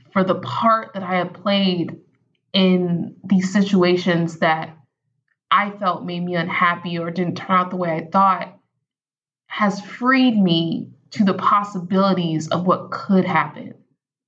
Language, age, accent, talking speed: English, 20-39, American, 145 wpm